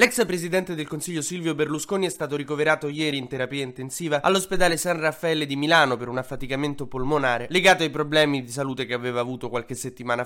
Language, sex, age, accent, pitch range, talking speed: Italian, male, 20-39, native, 125-155 Hz, 185 wpm